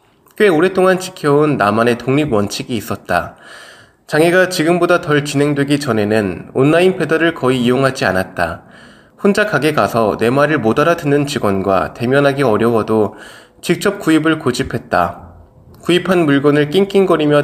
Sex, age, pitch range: male, 20-39, 110-160 Hz